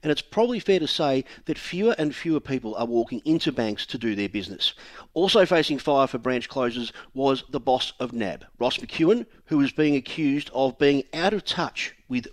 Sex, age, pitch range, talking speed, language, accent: male, 40-59, 115-160 Hz, 205 wpm, English, Australian